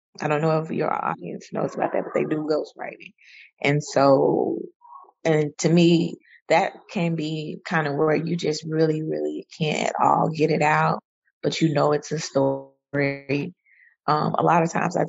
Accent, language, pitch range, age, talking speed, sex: American, English, 150-170 Hz, 20-39, 180 wpm, female